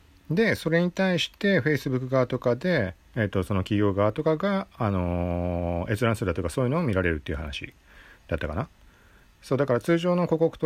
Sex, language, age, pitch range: male, Japanese, 40-59, 90-135 Hz